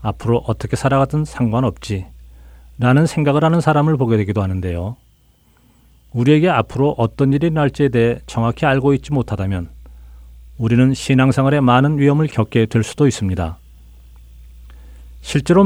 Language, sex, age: Korean, male, 40-59